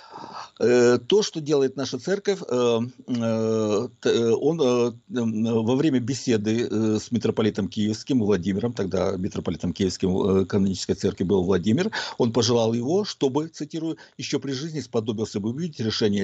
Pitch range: 110-155 Hz